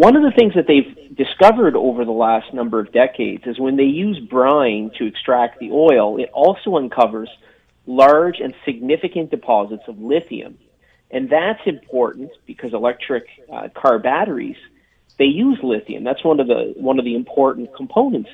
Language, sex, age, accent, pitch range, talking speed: English, male, 30-49, American, 115-150 Hz, 165 wpm